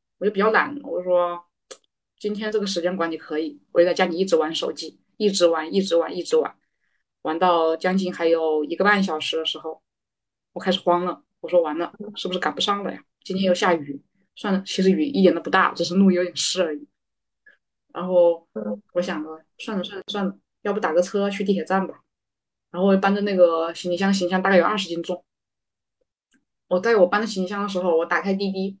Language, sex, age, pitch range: Chinese, female, 20-39, 175-205 Hz